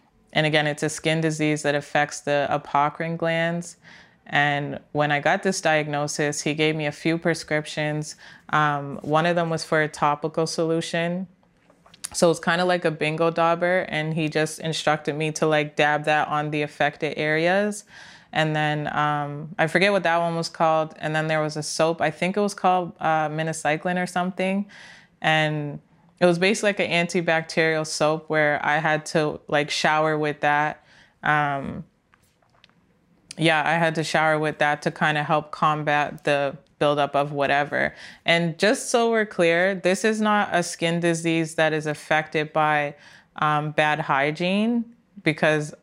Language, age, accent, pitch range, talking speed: English, 20-39, American, 150-170 Hz, 170 wpm